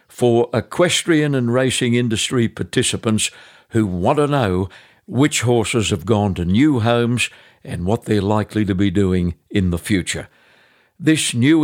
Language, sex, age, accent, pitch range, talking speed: English, male, 60-79, British, 95-130 Hz, 150 wpm